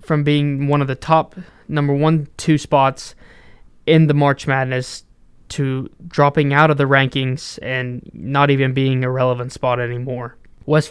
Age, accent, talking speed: 20-39, American, 160 wpm